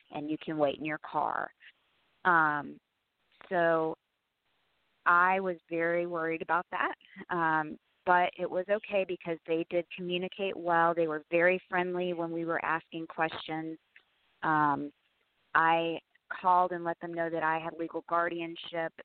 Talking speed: 145 wpm